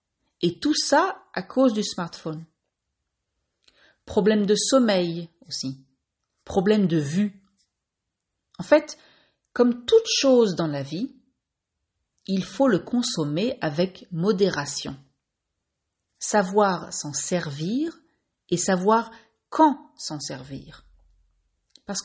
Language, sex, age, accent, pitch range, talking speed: French, female, 40-59, French, 165-245 Hz, 100 wpm